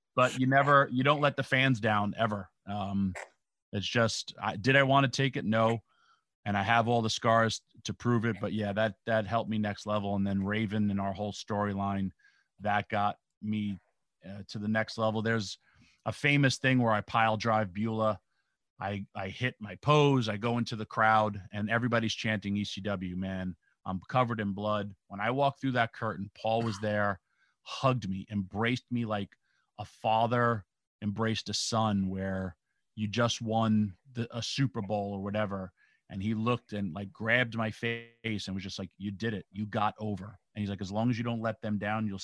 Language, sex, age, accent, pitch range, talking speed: English, male, 30-49, American, 100-115 Hz, 195 wpm